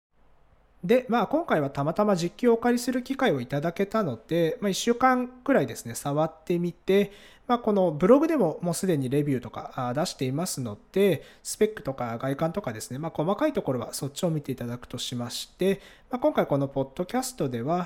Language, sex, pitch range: Japanese, male, 130-200 Hz